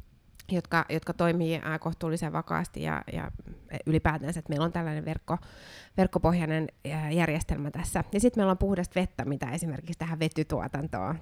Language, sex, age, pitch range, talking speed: Finnish, female, 30-49, 150-175 Hz, 150 wpm